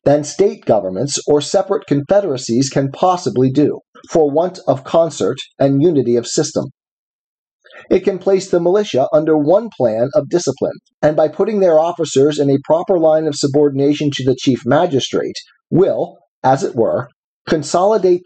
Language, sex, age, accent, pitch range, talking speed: English, male, 40-59, American, 145-200 Hz, 155 wpm